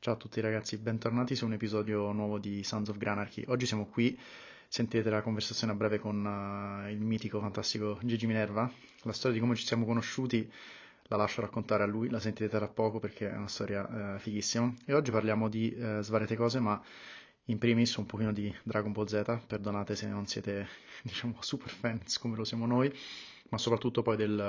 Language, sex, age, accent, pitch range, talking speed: Italian, male, 20-39, native, 105-115 Hz, 200 wpm